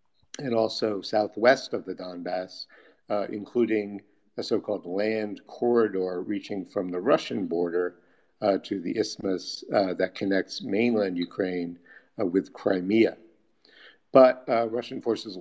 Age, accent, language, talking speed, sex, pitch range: 50-69, American, English, 130 wpm, male, 95-110 Hz